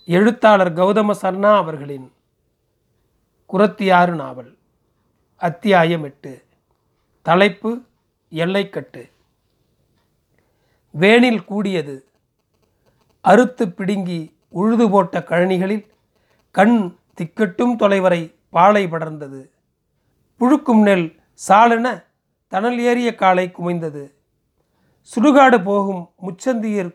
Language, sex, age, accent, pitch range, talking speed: Tamil, male, 40-59, native, 175-220 Hz, 70 wpm